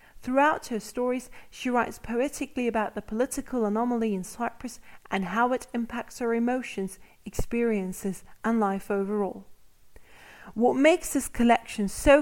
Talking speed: 135 wpm